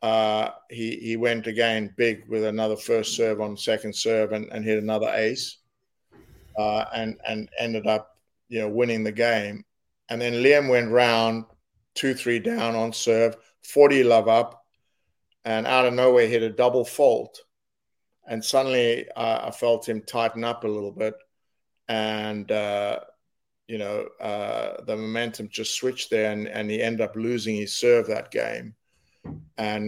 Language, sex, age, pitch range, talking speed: English, male, 50-69, 110-115 Hz, 160 wpm